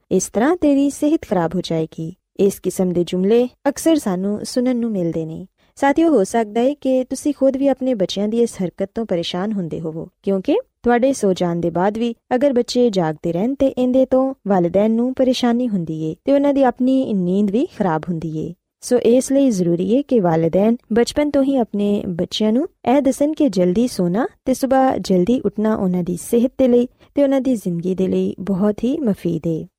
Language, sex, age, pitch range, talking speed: Punjabi, female, 20-39, 180-255 Hz, 95 wpm